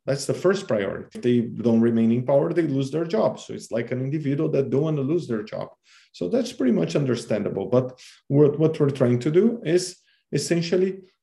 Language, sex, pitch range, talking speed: English, male, 115-150 Hz, 215 wpm